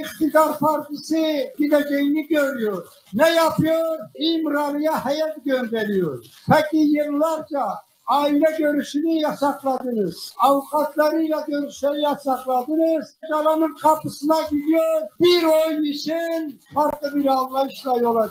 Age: 60-79